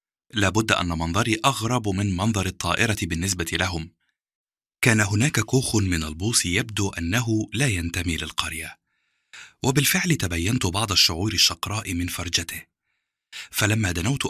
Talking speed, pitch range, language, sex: 120 wpm, 85-115 Hz, Arabic, male